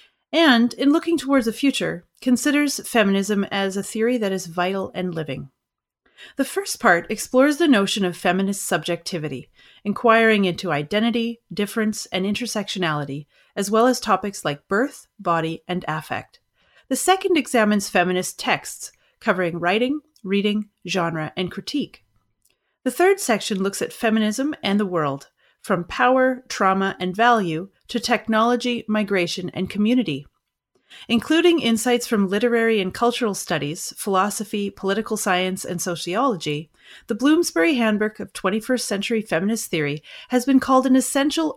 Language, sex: English, female